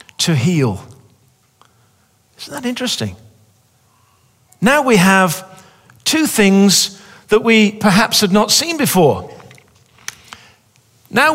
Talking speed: 95 wpm